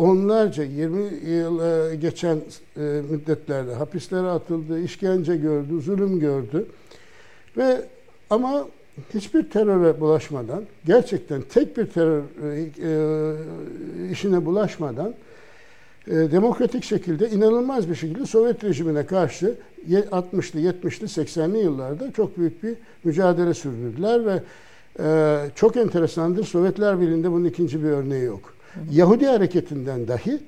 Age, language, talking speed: 60-79, Turkish, 110 wpm